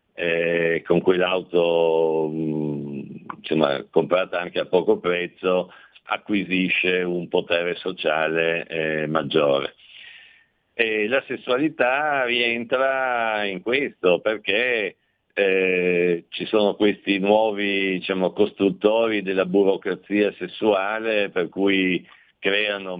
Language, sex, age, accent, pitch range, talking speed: Italian, male, 50-69, native, 85-100 Hz, 90 wpm